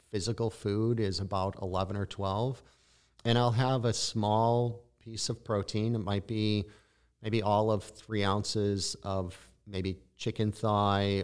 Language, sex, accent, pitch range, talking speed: English, male, American, 95-110 Hz, 145 wpm